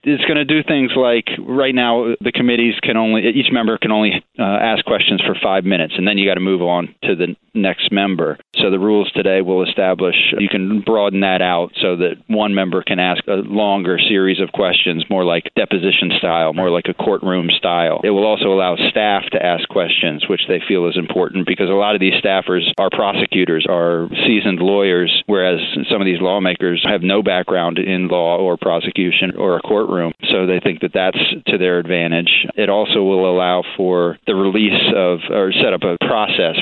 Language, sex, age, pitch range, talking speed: English, male, 40-59, 90-110 Hz, 205 wpm